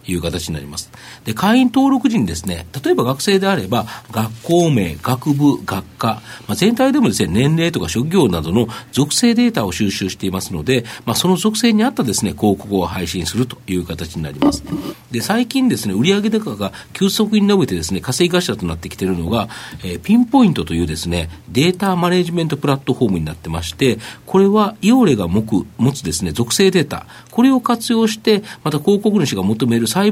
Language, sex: Japanese, male